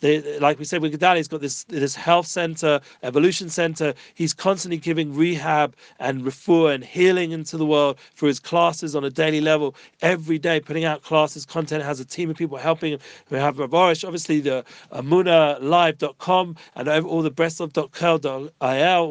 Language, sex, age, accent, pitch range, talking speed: English, male, 40-59, British, 155-195 Hz, 175 wpm